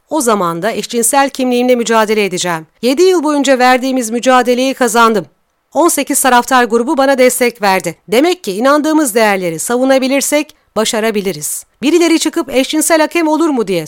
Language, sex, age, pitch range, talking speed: Turkish, female, 40-59, 215-295 Hz, 140 wpm